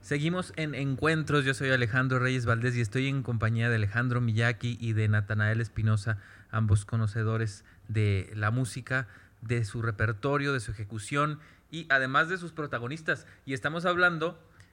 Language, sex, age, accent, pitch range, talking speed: Spanish, male, 30-49, Mexican, 105-140 Hz, 155 wpm